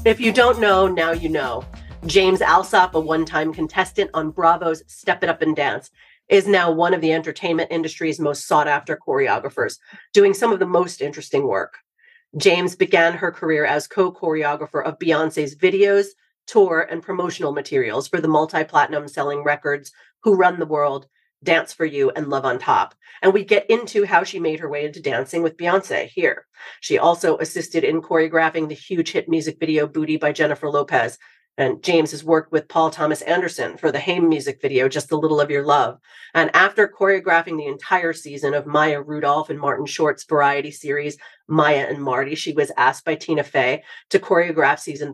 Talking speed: 185 wpm